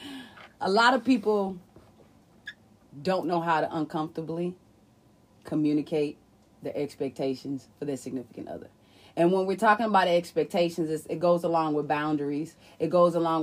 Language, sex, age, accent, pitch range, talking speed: English, female, 30-49, American, 170-245 Hz, 140 wpm